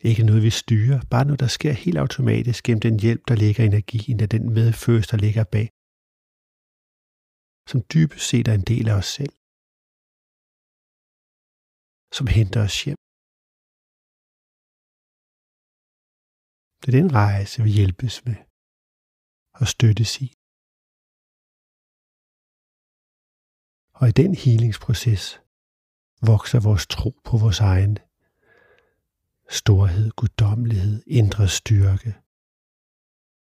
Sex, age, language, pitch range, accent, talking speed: male, 50-69, Danish, 100-120 Hz, native, 110 wpm